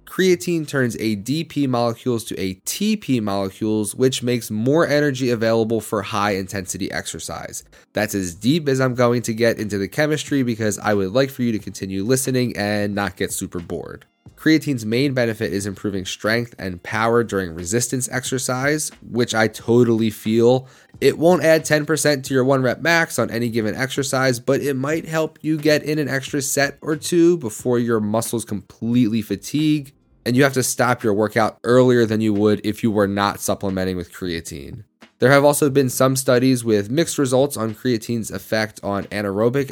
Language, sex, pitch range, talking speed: English, male, 105-135 Hz, 180 wpm